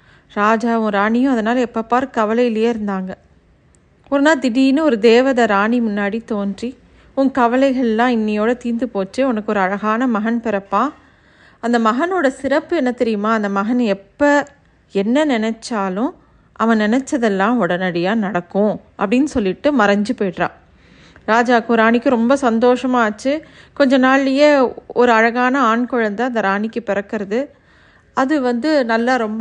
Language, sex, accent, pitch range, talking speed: Tamil, female, native, 210-255 Hz, 125 wpm